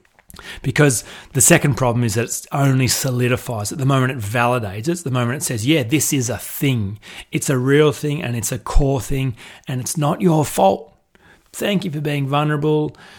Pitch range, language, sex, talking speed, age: 120-150 Hz, English, male, 195 wpm, 30-49